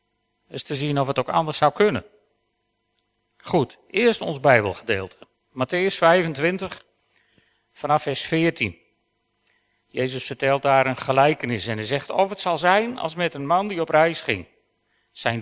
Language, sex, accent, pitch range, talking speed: Dutch, male, Dutch, 125-155 Hz, 150 wpm